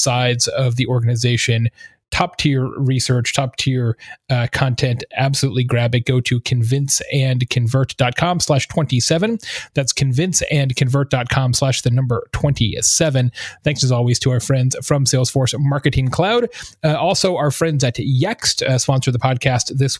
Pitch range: 125-145 Hz